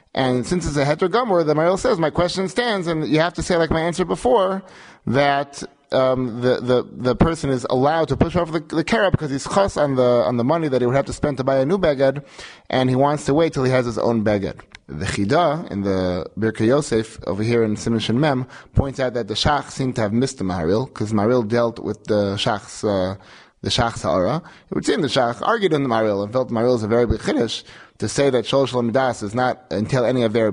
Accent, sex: American, male